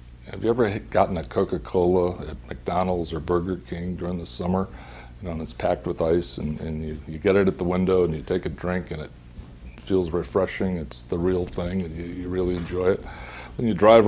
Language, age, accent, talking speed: English, 60-79, American, 220 wpm